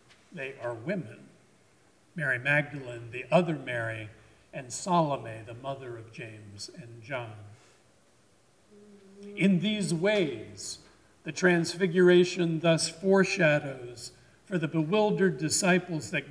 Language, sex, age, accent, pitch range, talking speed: English, male, 50-69, American, 135-190 Hz, 105 wpm